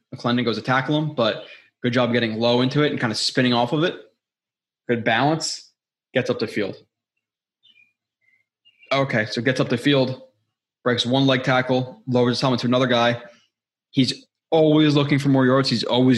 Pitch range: 115-135 Hz